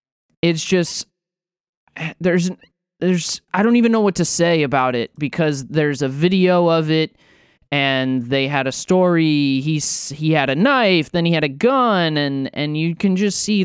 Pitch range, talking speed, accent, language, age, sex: 130-155 Hz, 175 wpm, American, English, 20-39, male